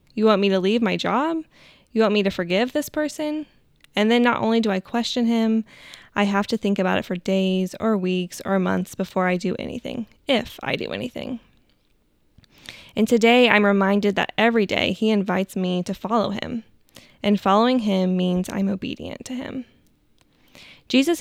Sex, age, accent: female, 10-29, American